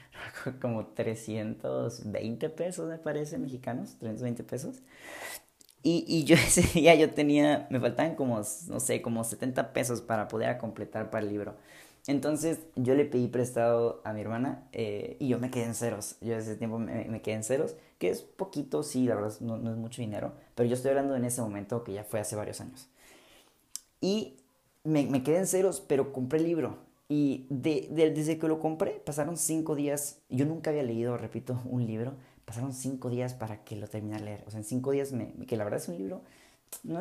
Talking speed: 205 wpm